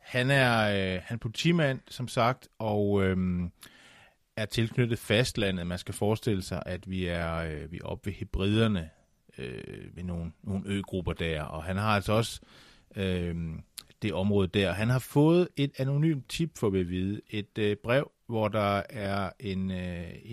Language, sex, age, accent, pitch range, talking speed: Danish, male, 30-49, native, 95-130 Hz, 175 wpm